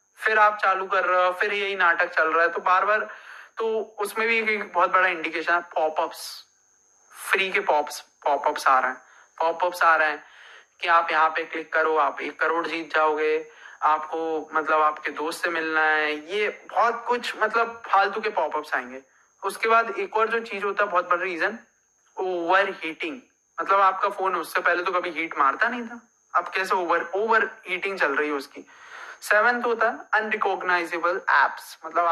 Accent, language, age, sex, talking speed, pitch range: native, Hindi, 30-49, male, 165 wpm, 165-215 Hz